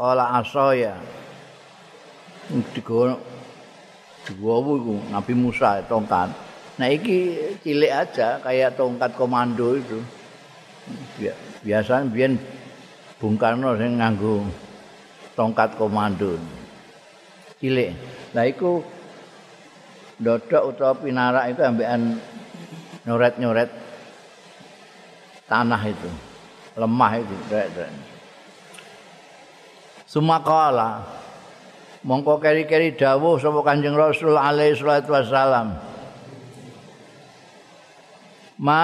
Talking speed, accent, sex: 75 wpm, native, male